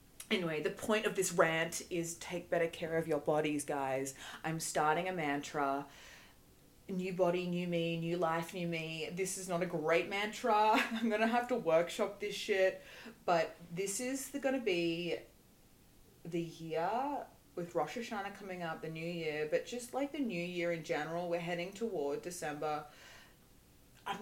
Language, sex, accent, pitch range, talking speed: English, female, Australian, 150-195 Hz, 170 wpm